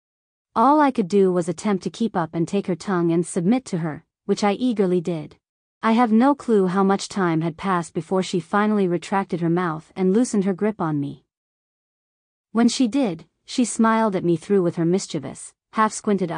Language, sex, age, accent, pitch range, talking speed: English, female, 40-59, American, 170-210 Hz, 200 wpm